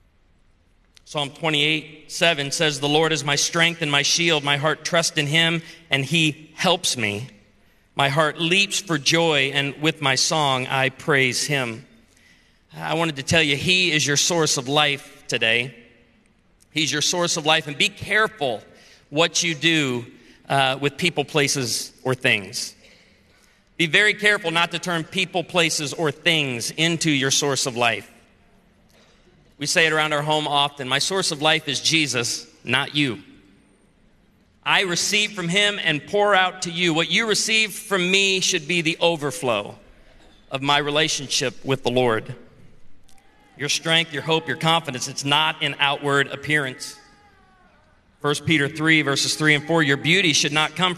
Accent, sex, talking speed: American, male, 165 wpm